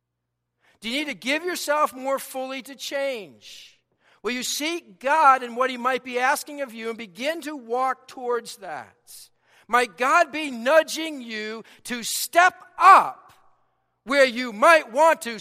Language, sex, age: English, male, 50-69